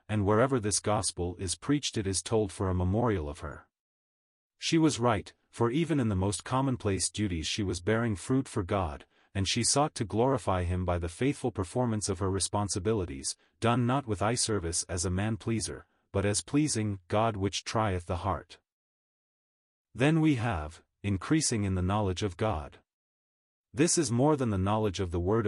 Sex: male